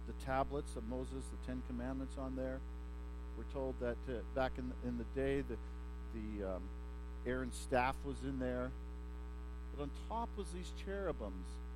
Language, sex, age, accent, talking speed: English, male, 50-69, American, 170 wpm